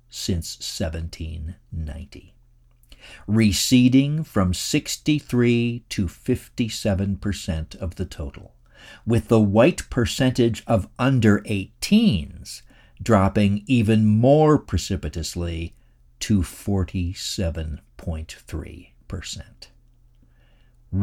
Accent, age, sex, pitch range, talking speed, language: American, 50-69, male, 75-115 Hz, 65 wpm, English